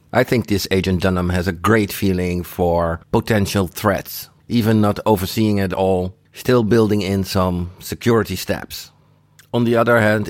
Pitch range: 95-115 Hz